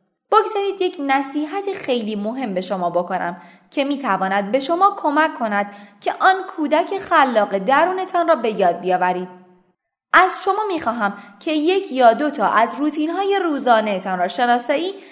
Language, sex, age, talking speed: Persian, female, 20-39, 145 wpm